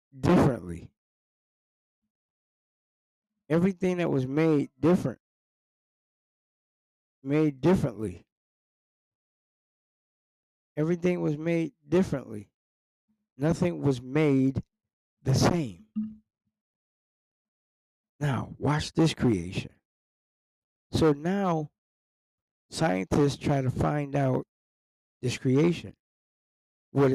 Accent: American